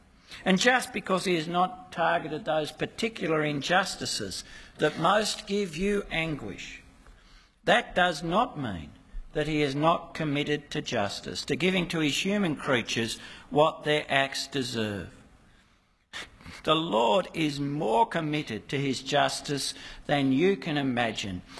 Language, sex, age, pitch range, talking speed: English, male, 60-79, 115-160 Hz, 135 wpm